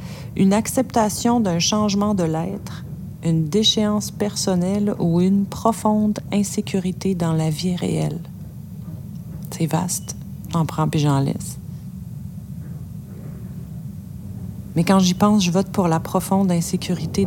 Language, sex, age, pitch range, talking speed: French, female, 40-59, 160-195 Hz, 120 wpm